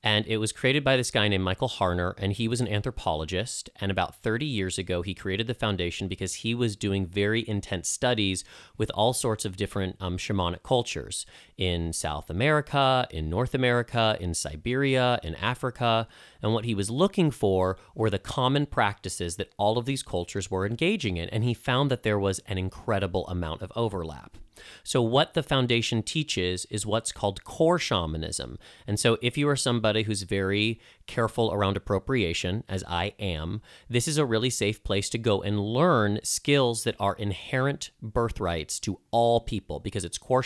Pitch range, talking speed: 95-120 Hz, 180 wpm